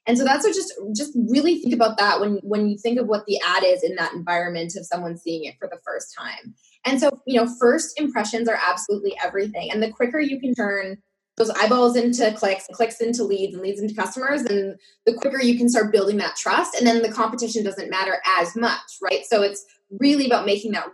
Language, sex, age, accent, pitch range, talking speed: English, female, 20-39, American, 200-250 Hz, 230 wpm